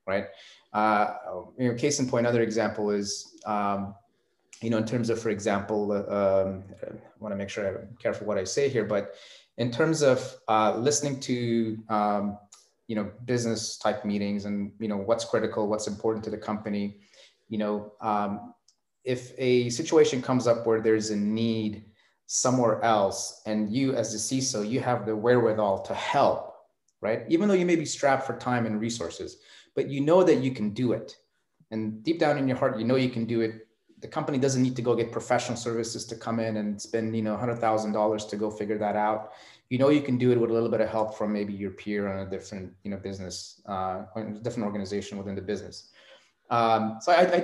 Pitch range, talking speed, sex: 105-125 Hz, 210 wpm, male